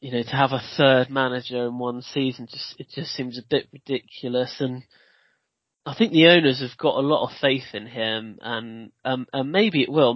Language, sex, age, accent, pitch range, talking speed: English, male, 20-39, British, 120-135 Hz, 215 wpm